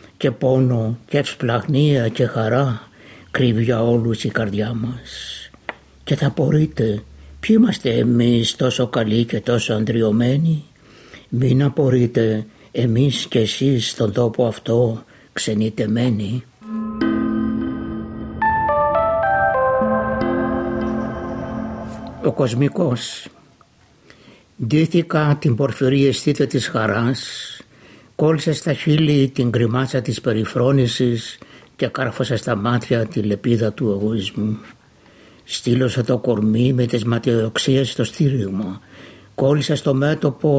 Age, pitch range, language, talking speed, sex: 60-79, 115-135 Hz, Greek, 100 wpm, male